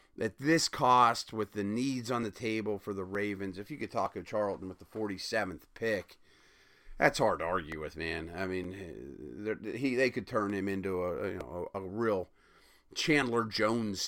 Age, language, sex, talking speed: 40-59, English, male, 190 wpm